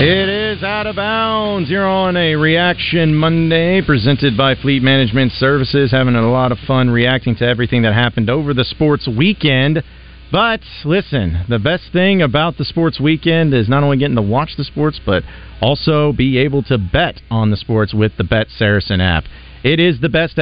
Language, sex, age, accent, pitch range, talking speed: English, male, 40-59, American, 115-155 Hz, 190 wpm